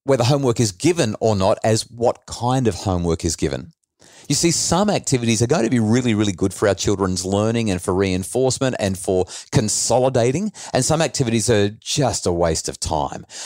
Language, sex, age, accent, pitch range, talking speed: English, male, 40-59, Australian, 100-130 Hz, 190 wpm